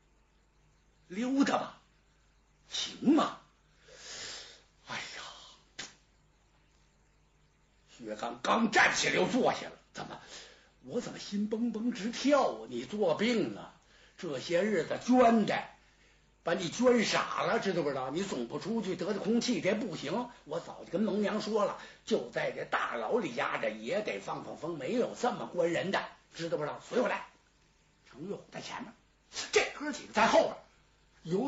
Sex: male